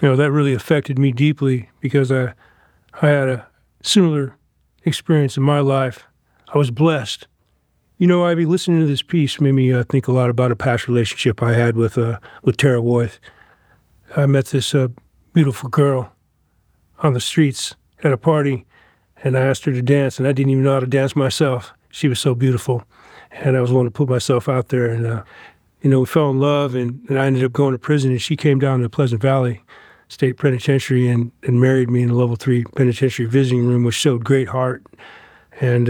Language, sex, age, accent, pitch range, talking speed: English, male, 40-59, American, 125-140 Hz, 210 wpm